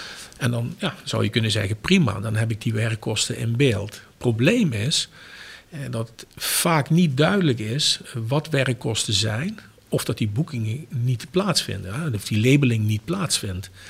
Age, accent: 50-69, Dutch